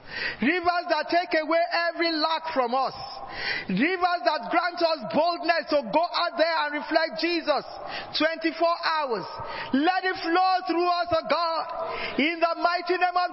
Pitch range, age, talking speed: 335-375 Hz, 40-59, 160 wpm